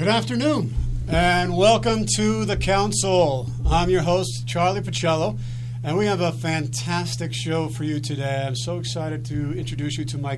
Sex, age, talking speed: male, 50-69, 170 wpm